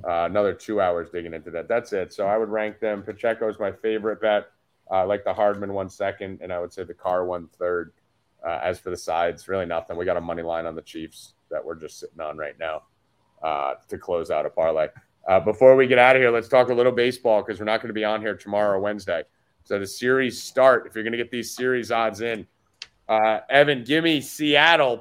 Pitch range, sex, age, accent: 105-130 Hz, male, 30-49, American